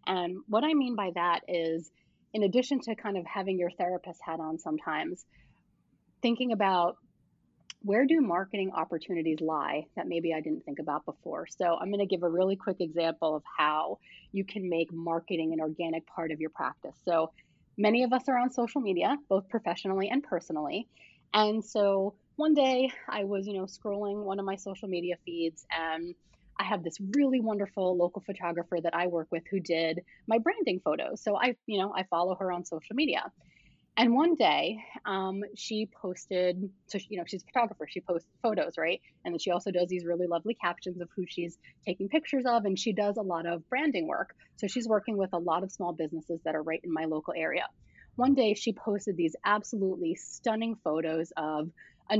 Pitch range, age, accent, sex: 170-215 Hz, 30-49, American, female